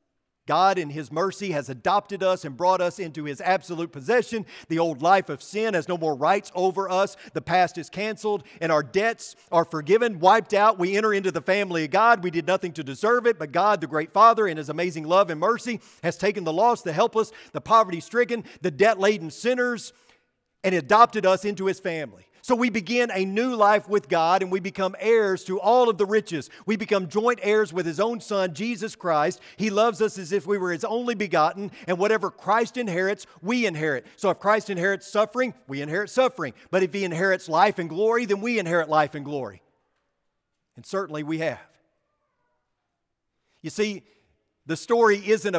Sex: male